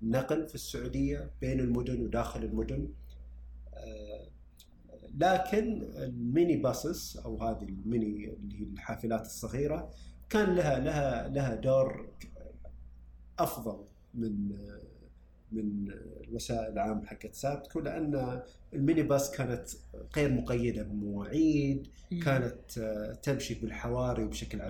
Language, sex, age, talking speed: Arabic, male, 50-69, 95 wpm